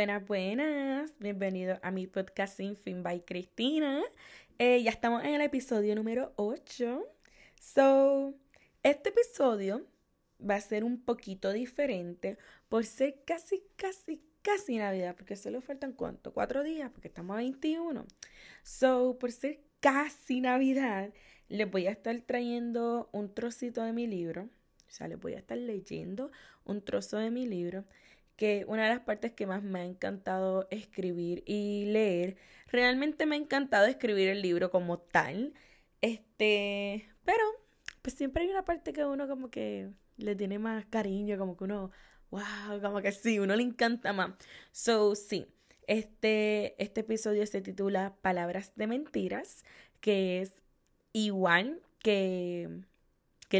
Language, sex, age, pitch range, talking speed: Spanish, female, 10-29, 195-260 Hz, 150 wpm